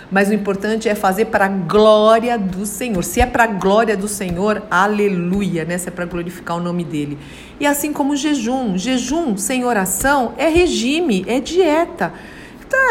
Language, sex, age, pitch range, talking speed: Portuguese, female, 50-69, 195-260 Hz, 180 wpm